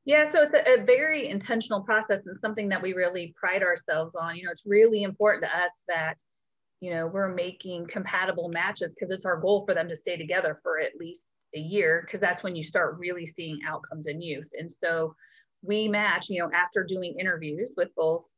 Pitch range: 160-205 Hz